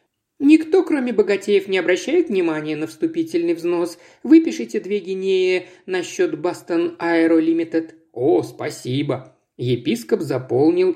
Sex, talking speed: male, 105 wpm